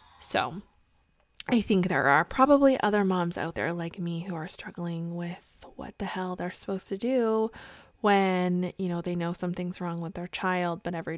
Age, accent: 20-39, American